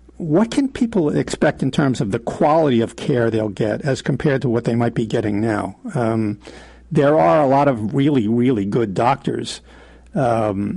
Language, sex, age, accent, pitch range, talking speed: English, male, 50-69, American, 110-150 Hz, 185 wpm